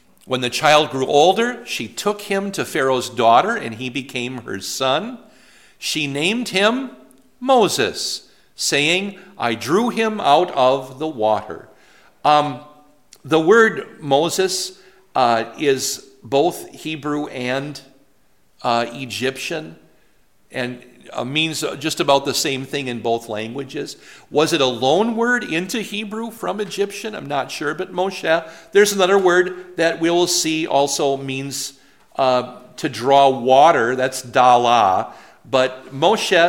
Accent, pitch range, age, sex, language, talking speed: American, 130-185 Hz, 50-69, male, English, 135 wpm